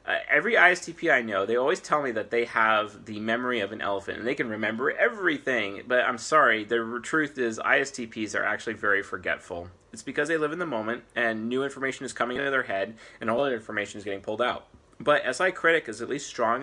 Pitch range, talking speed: 110-135 Hz, 225 wpm